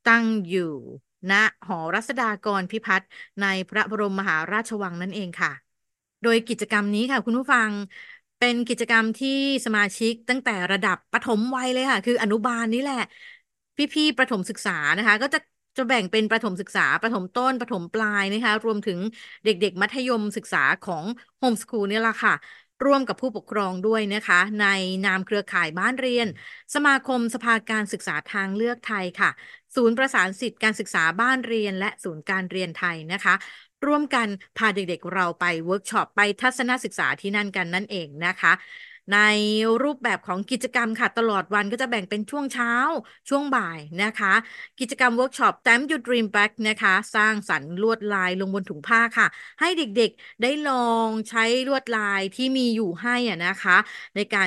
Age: 30-49